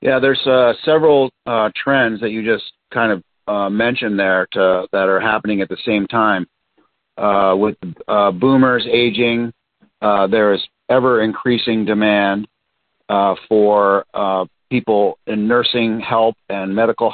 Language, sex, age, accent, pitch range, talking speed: English, male, 40-59, American, 100-120 Hz, 145 wpm